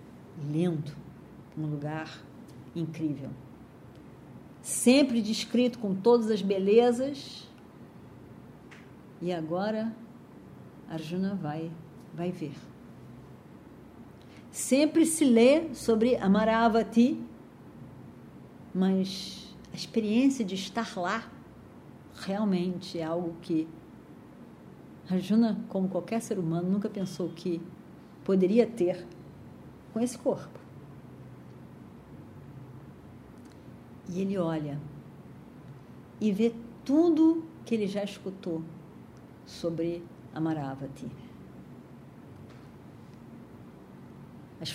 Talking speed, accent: 75 wpm, Brazilian